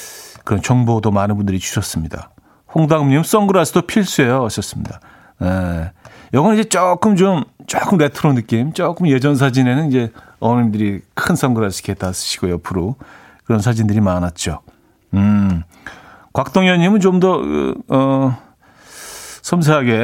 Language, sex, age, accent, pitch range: Korean, male, 40-59, native, 110-175 Hz